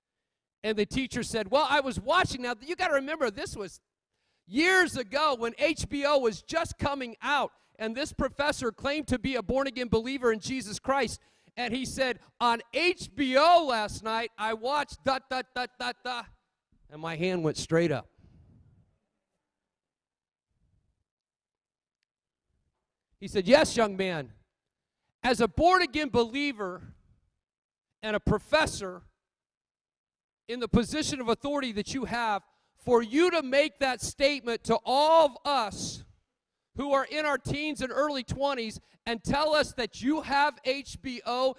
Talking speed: 140 wpm